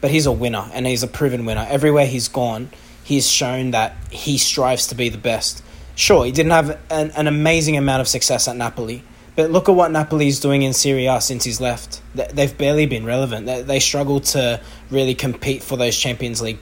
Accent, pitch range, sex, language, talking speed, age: Australian, 120-150 Hz, male, English, 215 wpm, 20-39